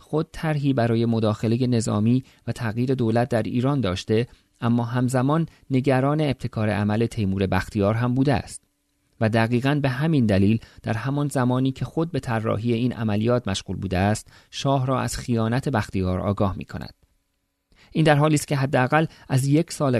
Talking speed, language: 160 wpm, Persian